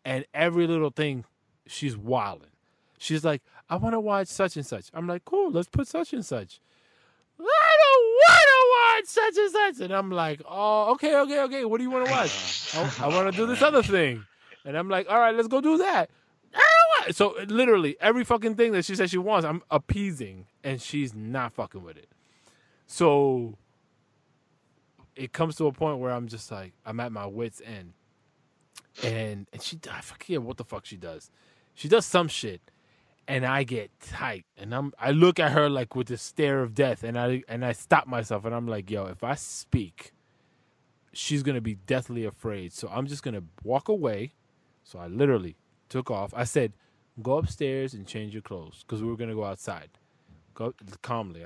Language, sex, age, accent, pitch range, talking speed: English, male, 20-39, American, 115-175 Hz, 195 wpm